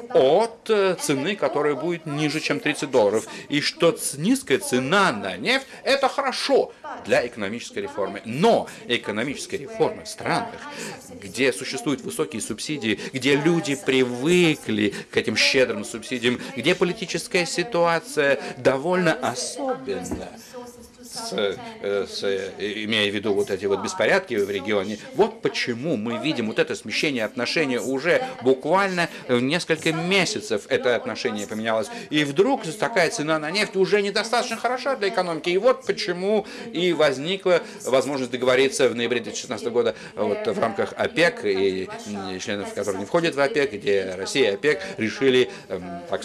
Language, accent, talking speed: Russian, native, 140 wpm